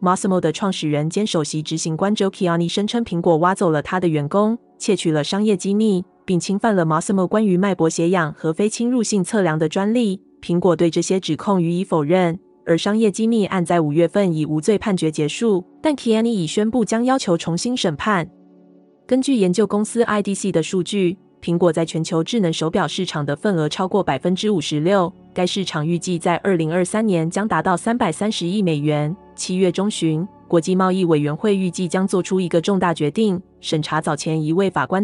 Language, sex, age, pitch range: Chinese, female, 20-39, 165-205 Hz